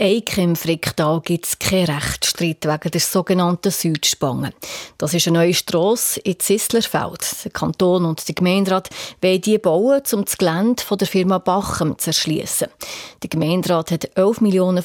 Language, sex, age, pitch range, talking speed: German, female, 30-49, 170-215 Hz, 155 wpm